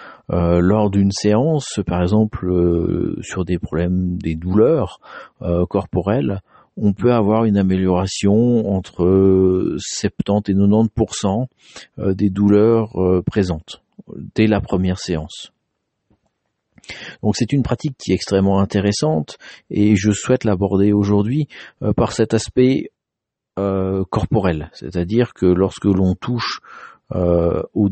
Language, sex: French, male